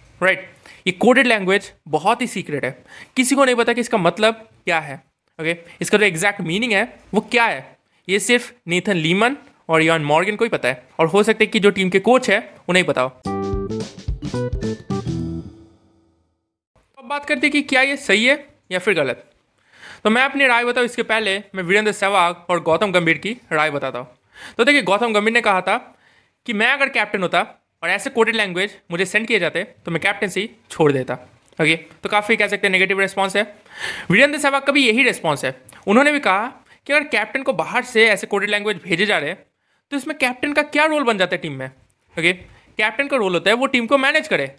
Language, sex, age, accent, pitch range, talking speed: Hindi, male, 20-39, native, 165-245 Hz, 210 wpm